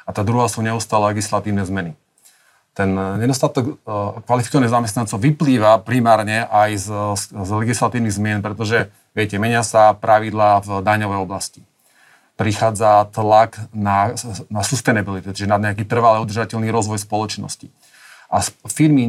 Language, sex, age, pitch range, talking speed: Slovak, male, 30-49, 105-125 Hz, 130 wpm